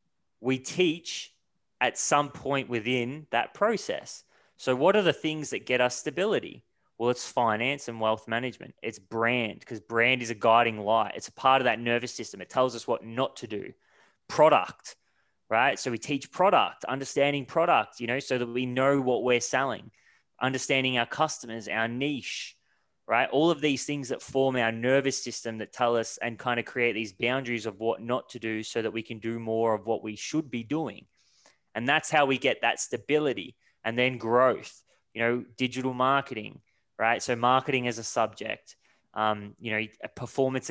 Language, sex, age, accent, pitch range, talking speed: English, male, 20-39, Australian, 115-135 Hz, 185 wpm